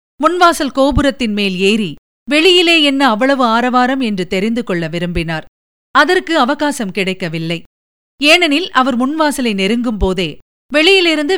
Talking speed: 105 wpm